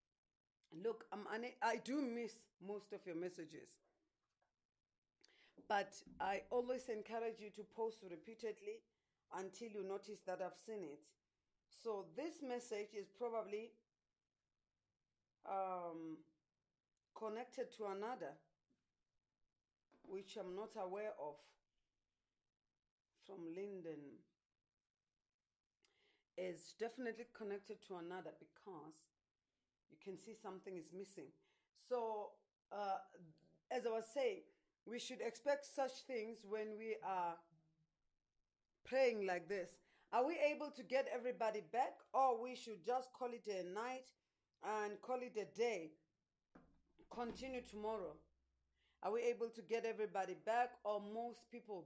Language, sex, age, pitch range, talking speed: English, female, 40-59, 185-235 Hz, 120 wpm